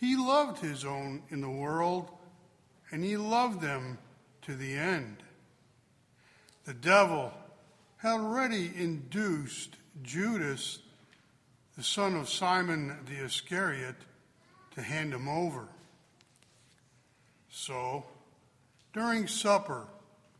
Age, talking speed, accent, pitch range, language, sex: 60-79, 95 wpm, American, 140-210 Hz, English, male